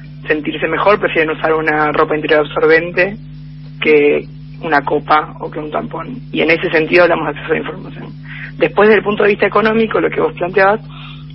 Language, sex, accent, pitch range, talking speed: Spanish, female, Argentinian, 150-175 Hz, 190 wpm